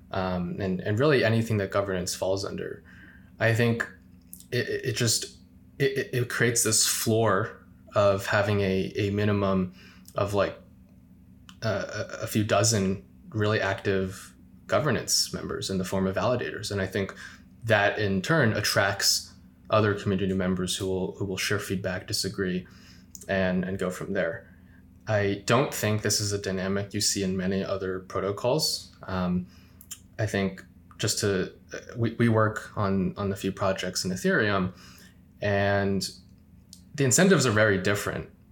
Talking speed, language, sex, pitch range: 150 wpm, English, male, 95-105 Hz